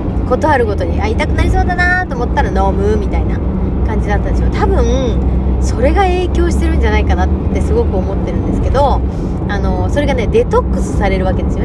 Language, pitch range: Japanese, 70-90 Hz